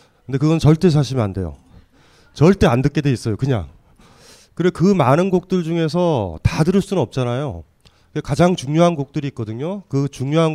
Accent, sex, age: native, male, 30-49